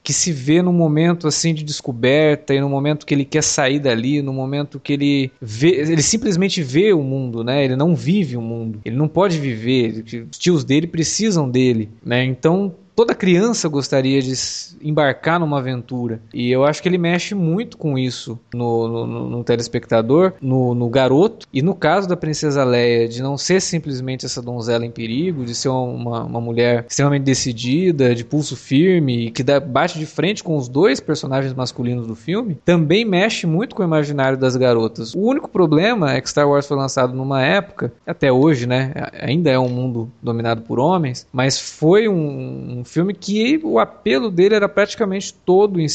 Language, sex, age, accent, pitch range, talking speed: Portuguese, male, 20-39, Brazilian, 125-170 Hz, 190 wpm